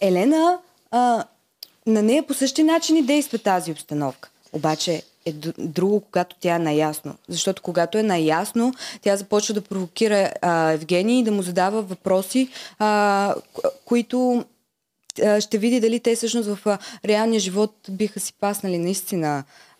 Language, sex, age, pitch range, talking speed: Bulgarian, female, 20-39, 175-220 Hz, 130 wpm